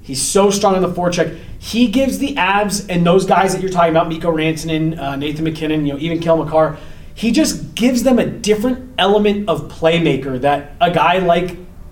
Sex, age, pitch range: male, 30-49, 125-170 Hz